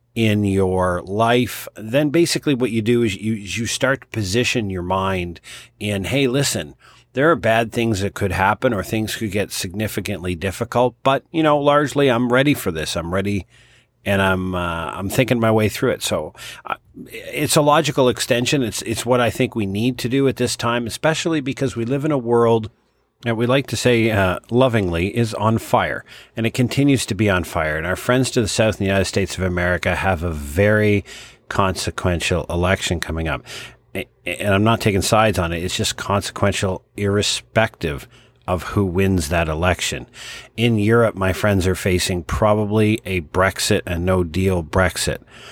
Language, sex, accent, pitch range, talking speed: English, male, American, 95-120 Hz, 185 wpm